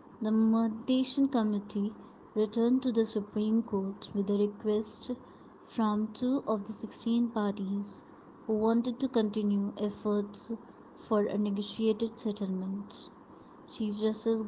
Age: 20-39